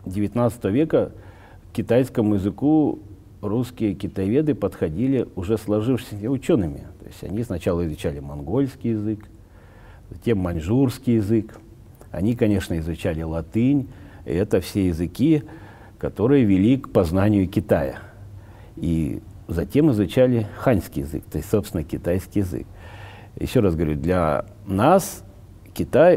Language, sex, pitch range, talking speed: Russian, male, 90-115 Hz, 115 wpm